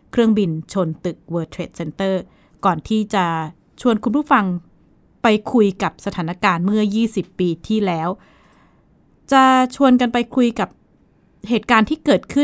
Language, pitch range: Thai, 185-230 Hz